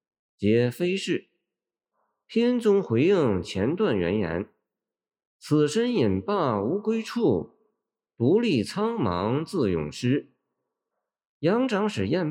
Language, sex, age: Chinese, male, 50-69